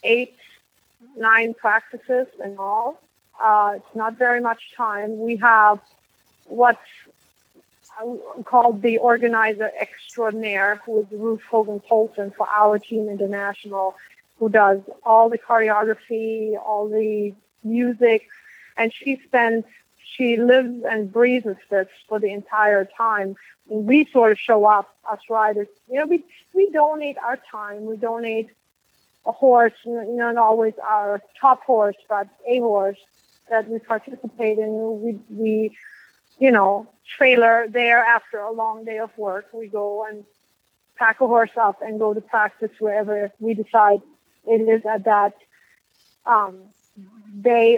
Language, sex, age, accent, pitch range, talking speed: English, female, 30-49, American, 210-235 Hz, 135 wpm